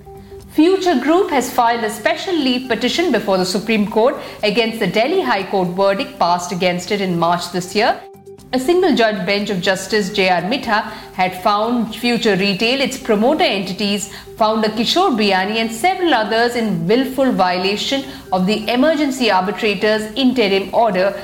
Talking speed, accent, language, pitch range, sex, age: 160 wpm, native, Hindi, 185-240 Hz, female, 50-69